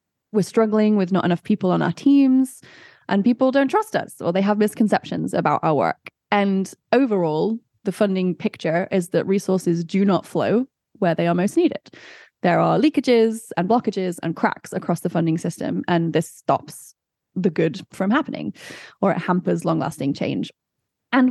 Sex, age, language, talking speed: female, 20-39, English, 175 wpm